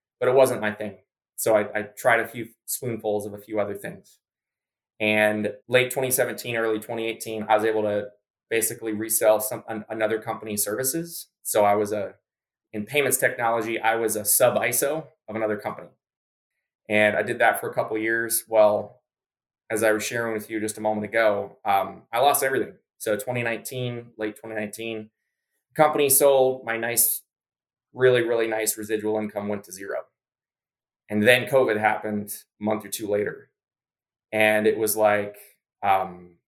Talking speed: 170 wpm